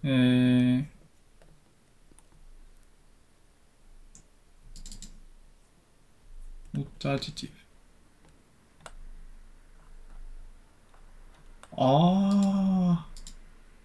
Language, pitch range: Japanese, 85-135 Hz